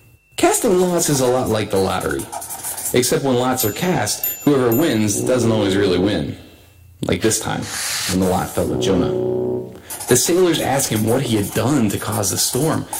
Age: 30-49